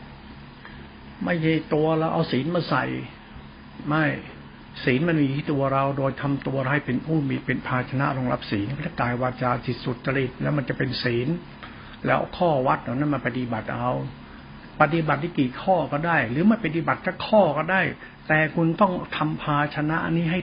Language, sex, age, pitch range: Thai, male, 70-89, 120-155 Hz